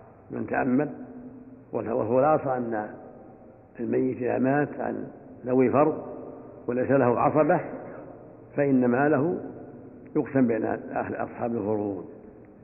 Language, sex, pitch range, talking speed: Arabic, male, 125-150 Hz, 95 wpm